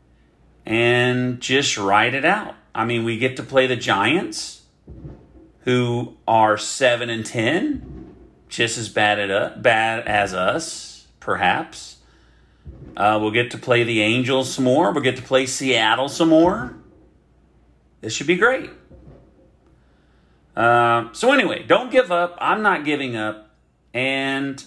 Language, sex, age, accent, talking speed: English, male, 40-59, American, 135 wpm